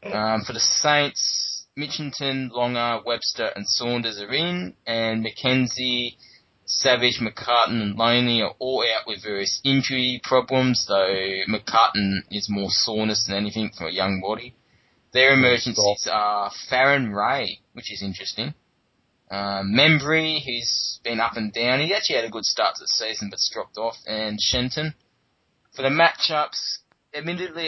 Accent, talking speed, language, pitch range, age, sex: Australian, 145 wpm, English, 110-140 Hz, 20-39, male